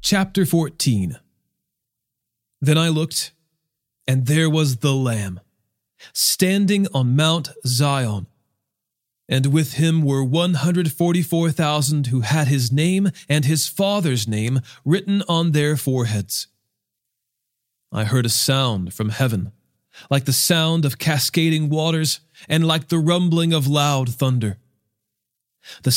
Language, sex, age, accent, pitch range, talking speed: English, male, 40-59, American, 130-165 Hz, 120 wpm